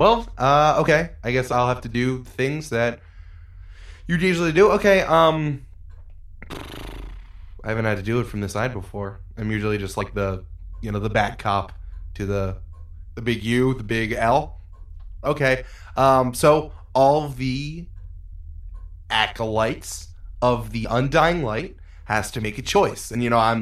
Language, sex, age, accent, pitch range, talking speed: English, male, 20-39, American, 95-125 Hz, 160 wpm